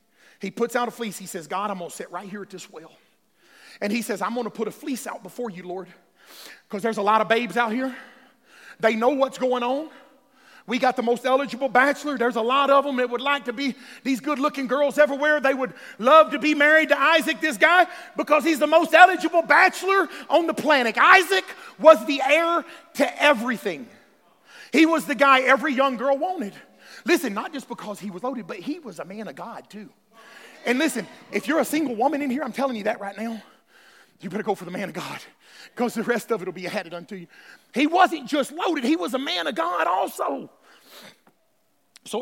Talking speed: 225 wpm